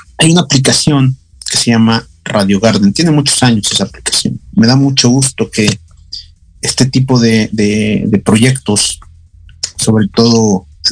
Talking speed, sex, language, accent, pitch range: 150 wpm, male, Spanish, Mexican, 85-130 Hz